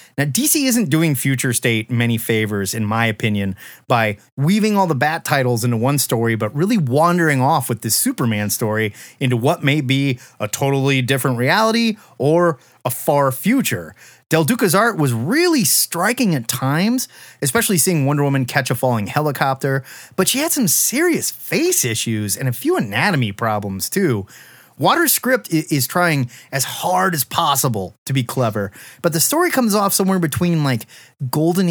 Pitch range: 125-190 Hz